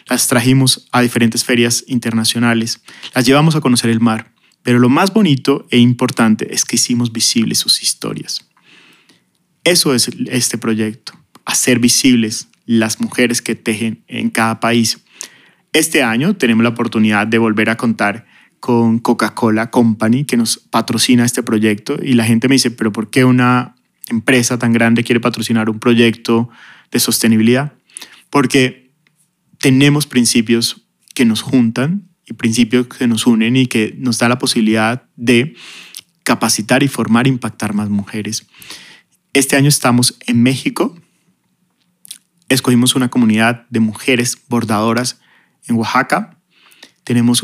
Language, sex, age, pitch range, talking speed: Spanish, male, 30-49, 115-130 Hz, 140 wpm